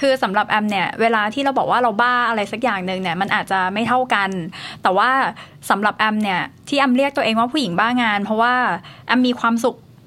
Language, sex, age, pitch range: Thai, female, 20-39, 210-255 Hz